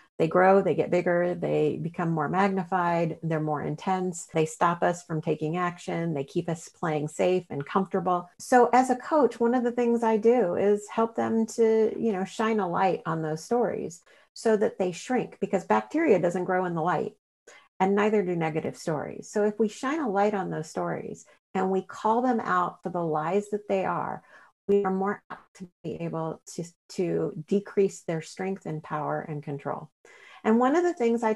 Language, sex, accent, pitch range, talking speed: English, female, American, 180-230 Hz, 200 wpm